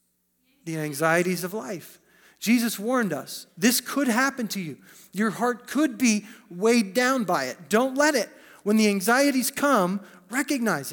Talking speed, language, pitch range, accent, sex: 155 wpm, English, 185-265 Hz, American, male